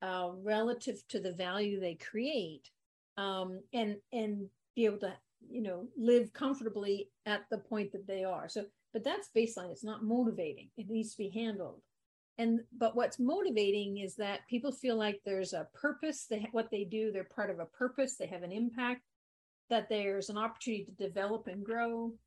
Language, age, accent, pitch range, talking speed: English, 50-69, American, 200-235 Hz, 185 wpm